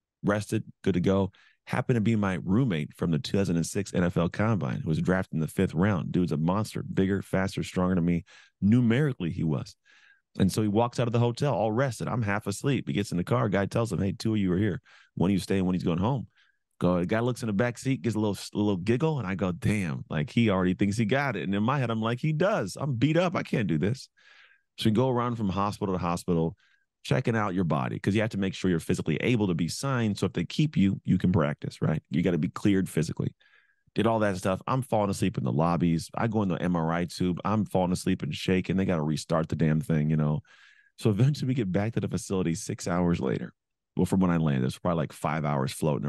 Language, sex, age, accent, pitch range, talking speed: English, male, 30-49, American, 90-115 Hz, 260 wpm